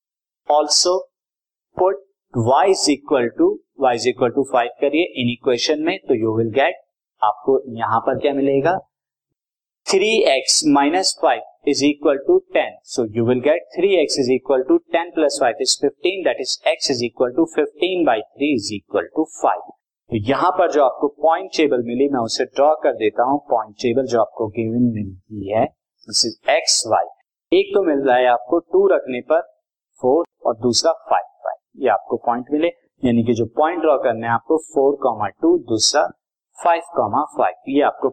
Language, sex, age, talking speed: Hindi, male, 50-69, 100 wpm